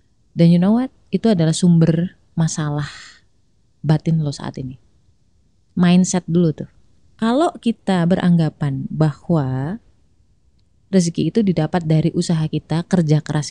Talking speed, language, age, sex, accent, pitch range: 120 wpm, Indonesian, 20-39, female, native, 155-230 Hz